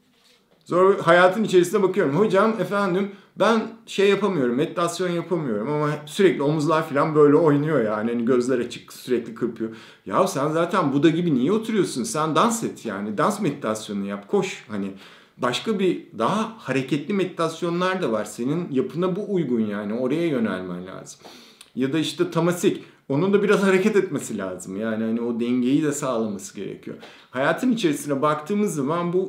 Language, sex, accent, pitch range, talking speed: Turkish, male, native, 130-190 Hz, 155 wpm